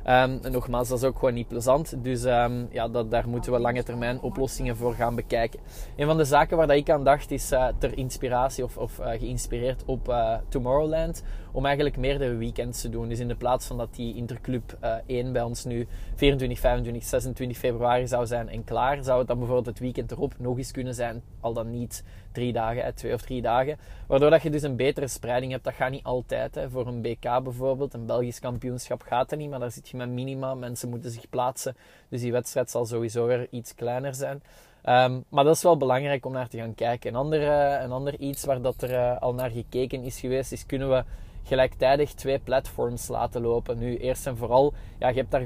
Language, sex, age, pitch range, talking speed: Dutch, male, 20-39, 120-135 Hz, 225 wpm